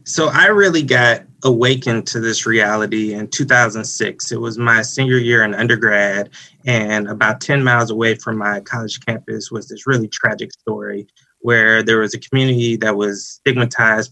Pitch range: 110-125 Hz